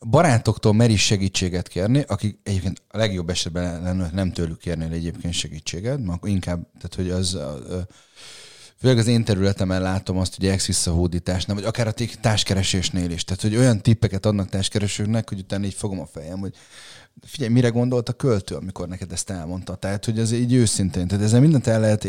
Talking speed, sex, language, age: 180 wpm, male, Hungarian, 30-49